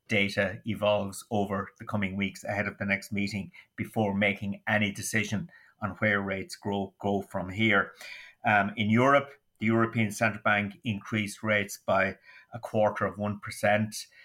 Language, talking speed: English, 155 wpm